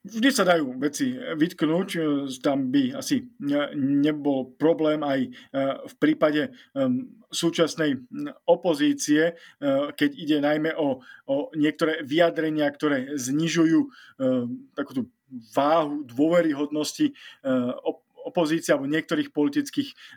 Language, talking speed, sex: Slovak, 90 wpm, male